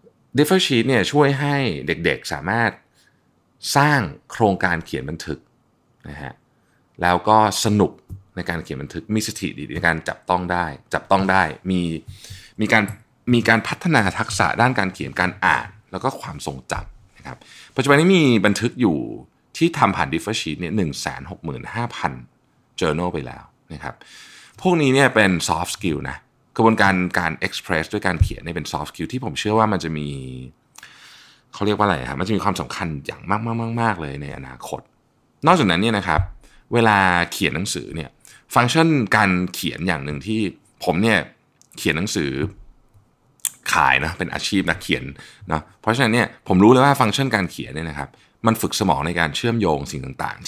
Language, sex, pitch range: Thai, male, 85-115 Hz